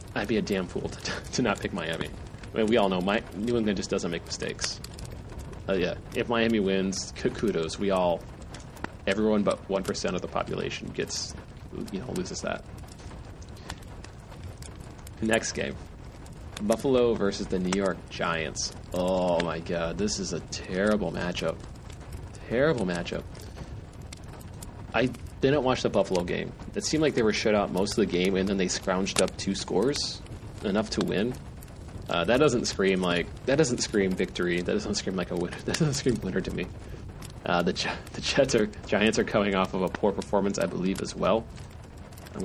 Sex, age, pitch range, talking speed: male, 30-49, 95-110 Hz, 180 wpm